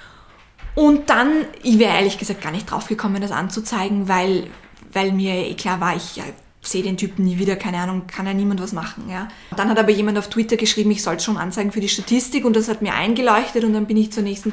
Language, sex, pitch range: German, female, 190-225 Hz